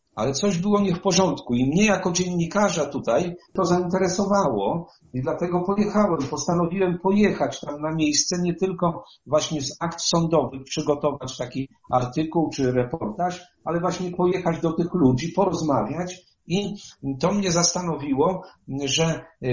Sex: male